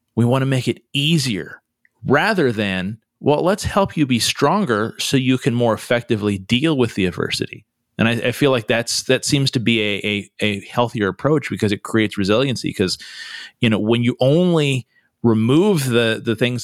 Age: 30-49